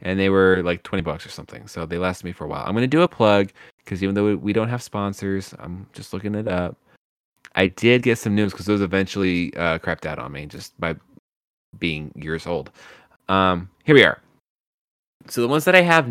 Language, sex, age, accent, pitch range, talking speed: English, male, 20-39, American, 95-120 Hz, 230 wpm